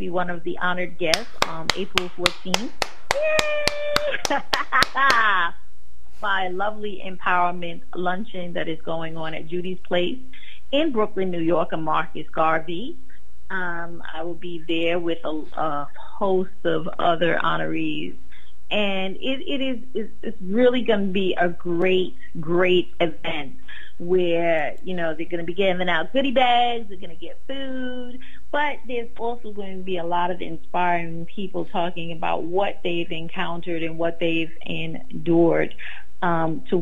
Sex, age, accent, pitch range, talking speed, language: female, 30-49, American, 170-220 Hz, 145 wpm, English